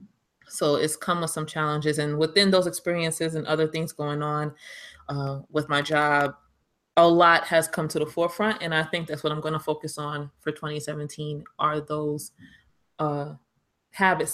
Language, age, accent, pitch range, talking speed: English, 20-39, American, 140-160 Hz, 175 wpm